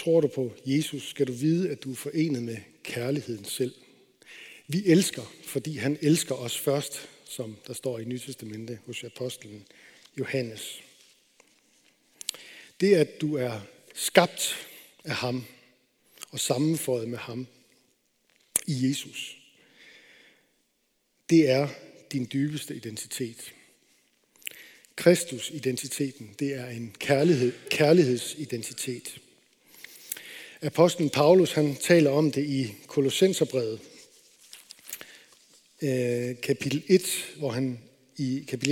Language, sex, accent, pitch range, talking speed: Danish, male, native, 125-155 Hz, 100 wpm